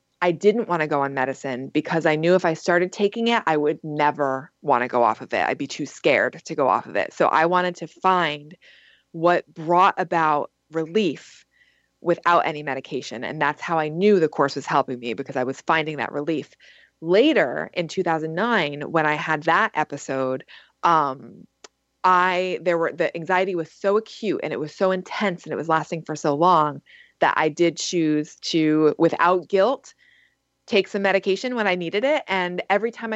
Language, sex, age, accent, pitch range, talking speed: English, female, 20-39, American, 155-195 Hz, 195 wpm